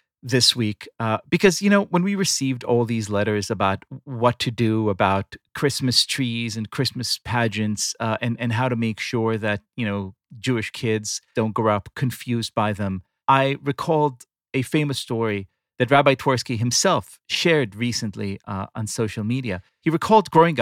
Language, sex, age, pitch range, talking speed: English, male, 40-59, 115-160 Hz, 170 wpm